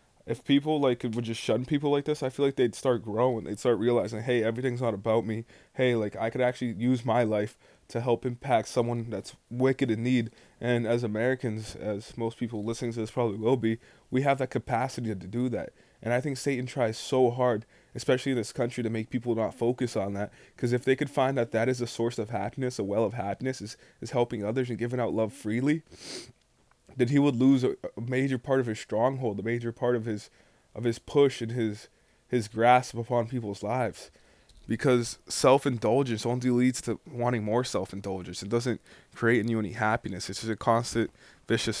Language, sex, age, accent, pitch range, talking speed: English, male, 20-39, American, 110-125 Hz, 210 wpm